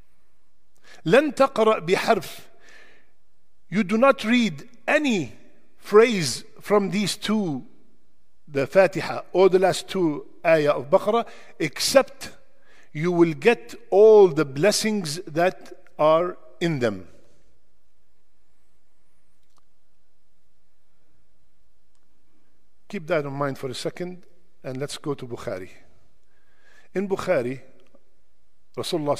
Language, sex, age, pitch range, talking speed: English, male, 50-69, 135-200 Hz, 95 wpm